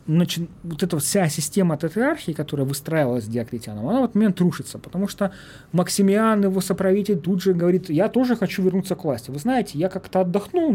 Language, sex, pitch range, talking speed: Russian, male, 135-190 Hz, 185 wpm